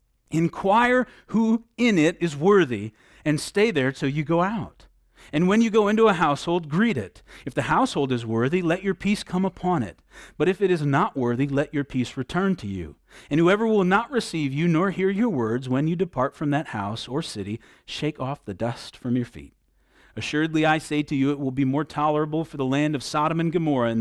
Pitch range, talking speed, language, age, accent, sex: 120-180 Hz, 220 wpm, English, 40-59, American, male